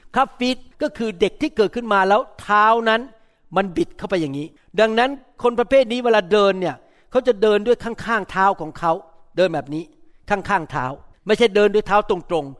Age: 60-79